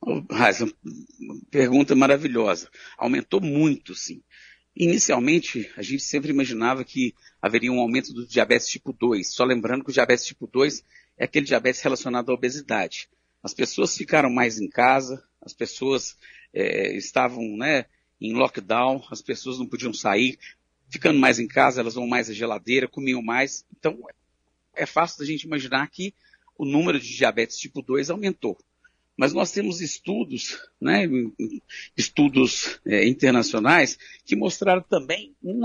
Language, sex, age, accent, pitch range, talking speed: Portuguese, male, 50-69, Brazilian, 125-190 Hz, 145 wpm